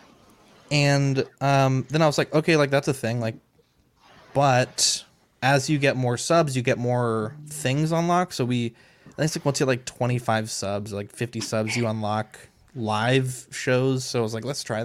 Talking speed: 180 wpm